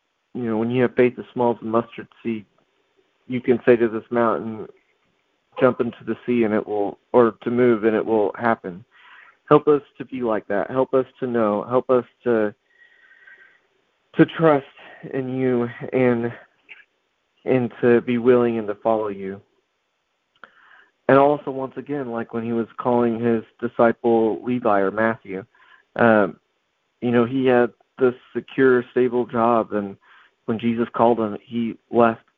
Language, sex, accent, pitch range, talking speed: English, male, American, 110-130 Hz, 150 wpm